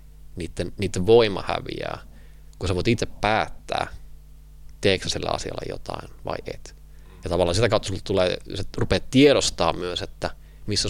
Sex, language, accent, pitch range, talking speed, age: male, Finnish, native, 80-100 Hz, 150 wpm, 20-39